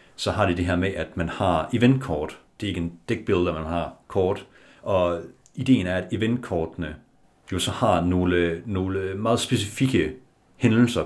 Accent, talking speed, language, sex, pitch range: native, 165 wpm, Danish, male, 85-110 Hz